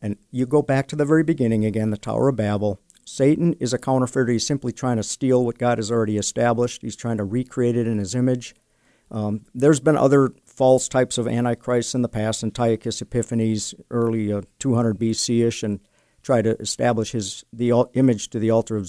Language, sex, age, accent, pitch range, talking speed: English, male, 50-69, American, 110-130 Hz, 205 wpm